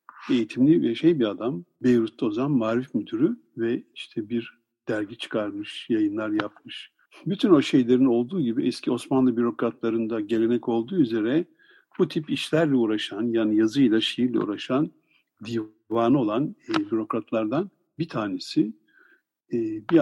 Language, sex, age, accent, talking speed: Turkish, male, 60-79, native, 130 wpm